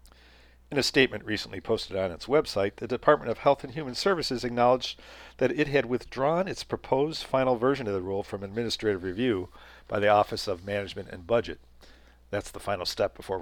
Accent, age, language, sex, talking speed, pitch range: American, 50-69, English, male, 190 wpm, 85-115 Hz